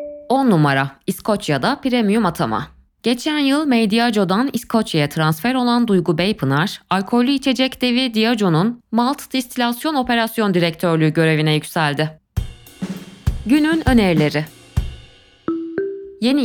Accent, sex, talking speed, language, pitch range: native, female, 95 wpm, Turkish, 155-245 Hz